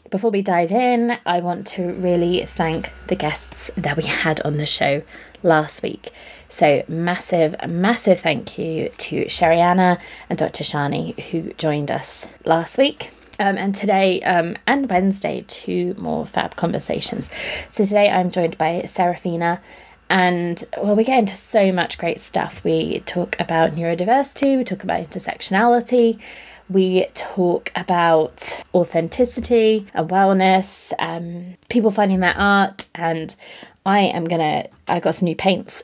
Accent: British